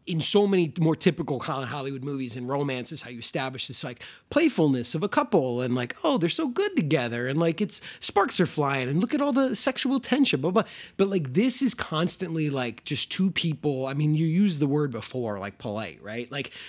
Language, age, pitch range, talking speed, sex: English, 30-49, 125-190 Hz, 215 wpm, male